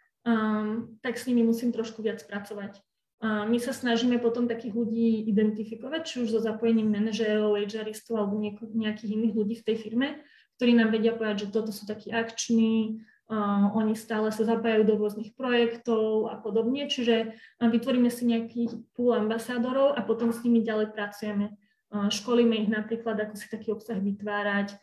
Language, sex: Slovak, female